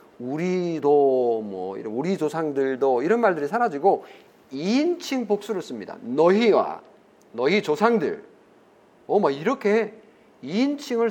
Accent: native